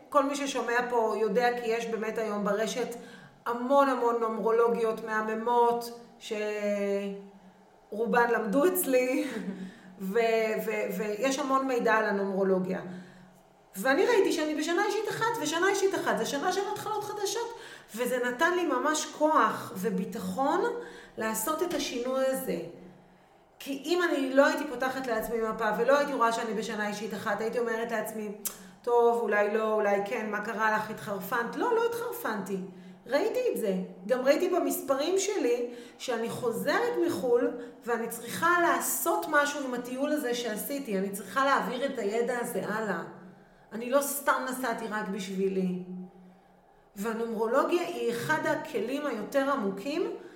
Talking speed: 135 wpm